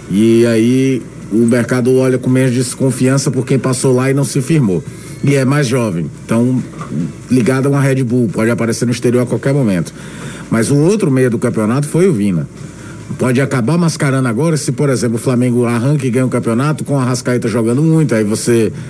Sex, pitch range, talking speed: male, 120-155 Hz, 210 wpm